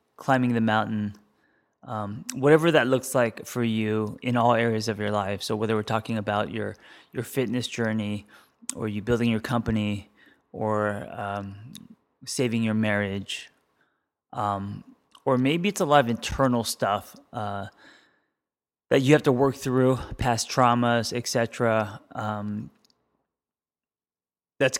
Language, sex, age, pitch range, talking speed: English, male, 20-39, 110-130 Hz, 135 wpm